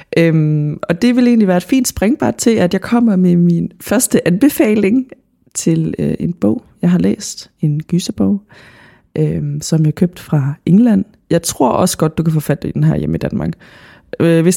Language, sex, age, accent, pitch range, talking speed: Danish, female, 20-39, native, 155-205 Hz, 180 wpm